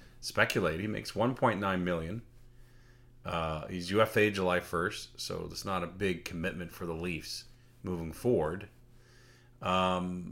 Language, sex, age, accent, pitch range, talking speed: English, male, 30-49, American, 85-115 Hz, 130 wpm